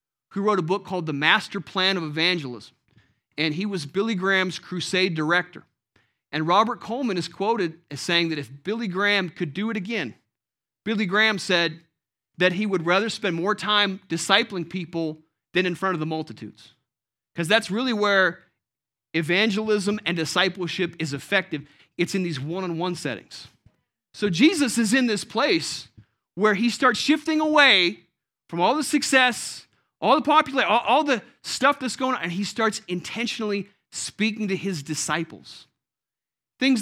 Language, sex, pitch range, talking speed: English, male, 155-220 Hz, 155 wpm